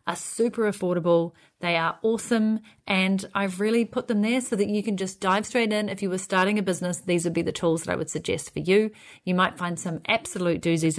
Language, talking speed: English, 235 wpm